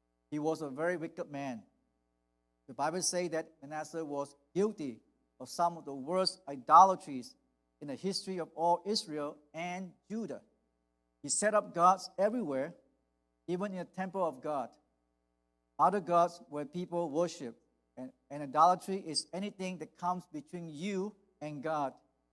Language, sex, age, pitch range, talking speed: English, male, 50-69, 120-180 Hz, 145 wpm